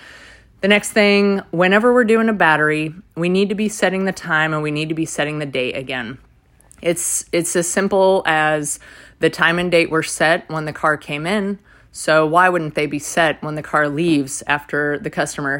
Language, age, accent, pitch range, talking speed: English, 30-49, American, 150-170 Hz, 205 wpm